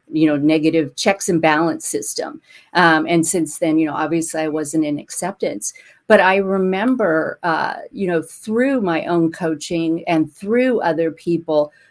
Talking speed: 160 wpm